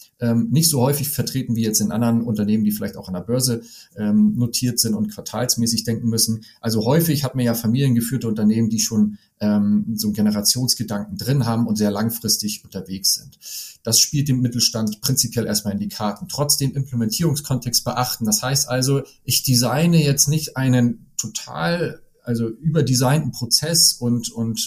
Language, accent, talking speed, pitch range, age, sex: German, German, 170 wpm, 110-130 Hz, 40-59, male